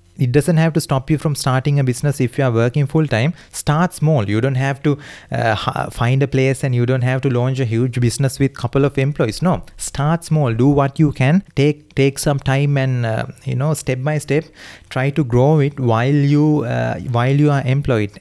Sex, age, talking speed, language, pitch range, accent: male, 20-39, 230 wpm, English, 120-140 Hz, Indian